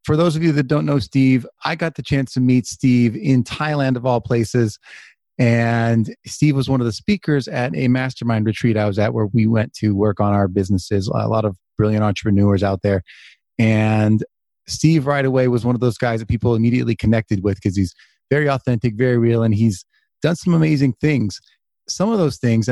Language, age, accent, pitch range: English, 30-49, American, 105-130 Hz